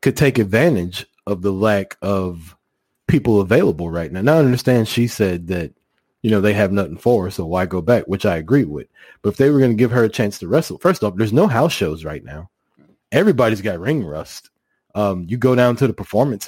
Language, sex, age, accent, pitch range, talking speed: English, male, 30-49, American, 90-115 Hz, 230 wpm